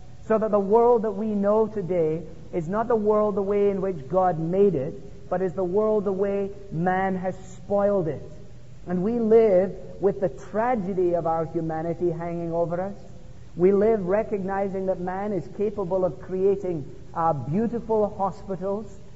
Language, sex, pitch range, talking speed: English, male, 165-200 Hz, 165 wpm